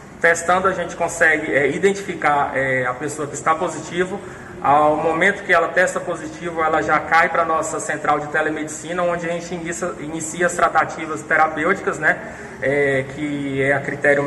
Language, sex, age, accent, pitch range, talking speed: Portuguese, male, 20-39, Brazilian, 155-185 Hz, 160 wpm